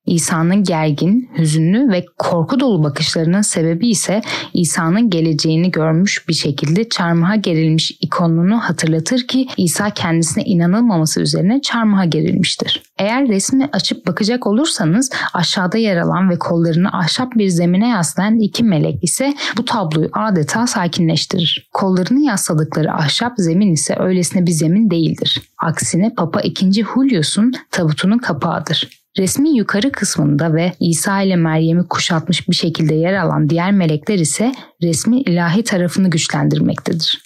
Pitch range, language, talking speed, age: 165-215 Hz, Turkish, 130 wpm, 10-29